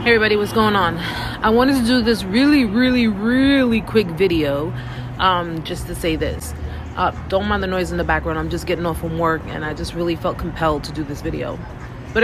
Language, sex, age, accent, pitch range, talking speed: English, female, 30-49, American, 155-215 Hz, 220 wpm